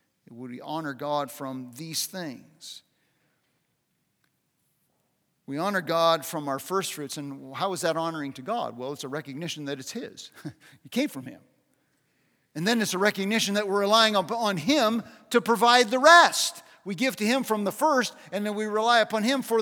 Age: 50-69